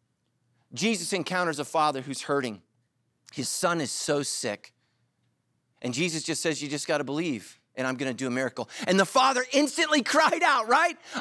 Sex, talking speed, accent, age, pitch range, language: male, 170 wpm, American, 40-59, 140-215 Hz, English